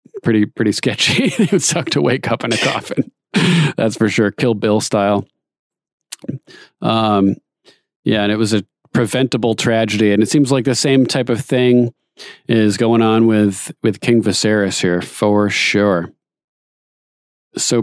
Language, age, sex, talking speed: English, 40-59, male, 155 wpm